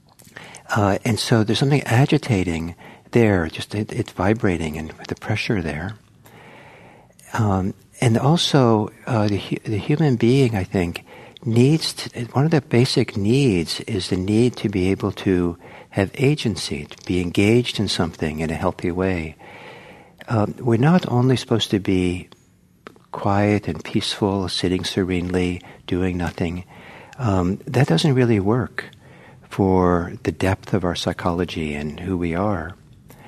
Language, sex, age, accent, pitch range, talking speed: English, male, 60-79, American, 95-125 Hz, 140 wpm